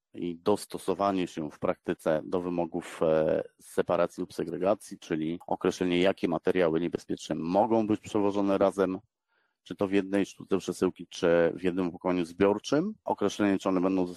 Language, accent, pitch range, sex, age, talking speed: Polish, native, 90-105 Hz, male, 30-49, 150 wpm